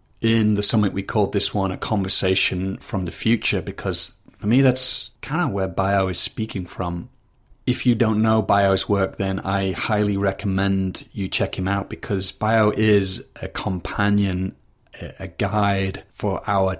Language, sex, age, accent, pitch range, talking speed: English, male, 30-49, British, 95-105 Hz, 165 wpm